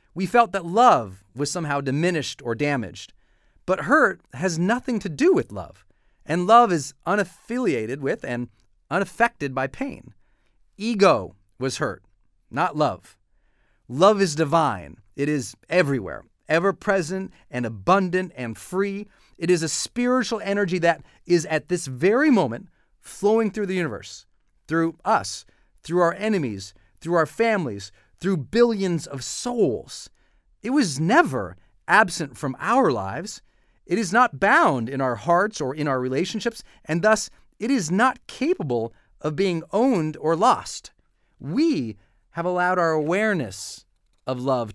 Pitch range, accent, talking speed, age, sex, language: 120-195 Hz, American, 140 wpm, 40-59, male, English